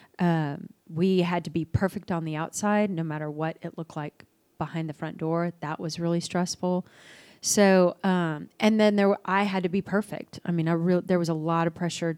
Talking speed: 215 wpm